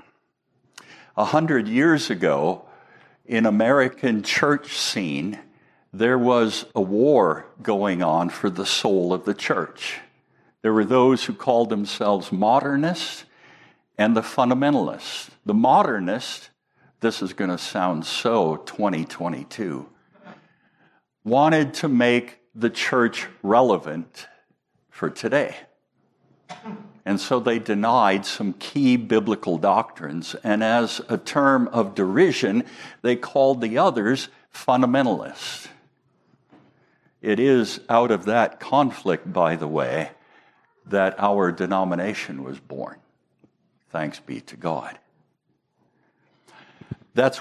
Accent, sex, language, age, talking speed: American, male, English, 60-79, 110 wpm